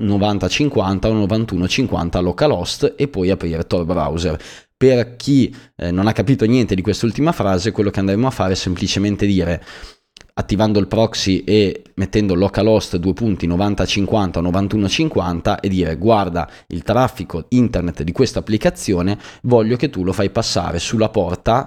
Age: 20-39